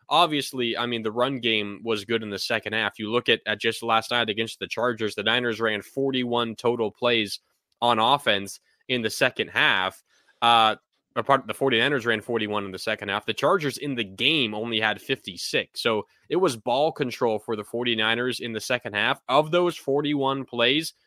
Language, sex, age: English, male, 20-39